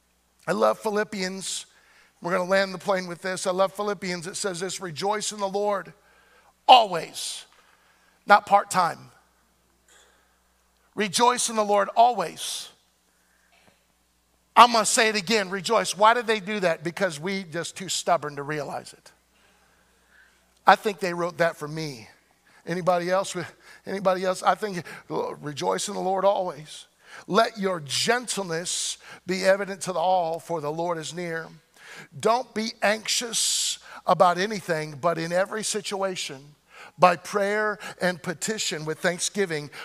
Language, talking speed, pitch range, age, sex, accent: English, 140 wpm, 165-205 Hz, 50-69, male, American